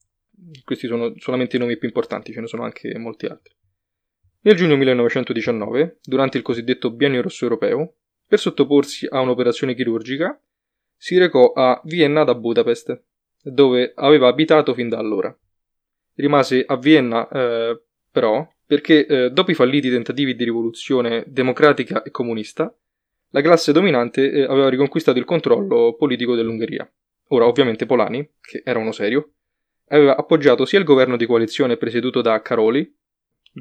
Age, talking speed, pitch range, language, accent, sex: 20-39, 150 wpm, 120-145 Hz, Italian, native, male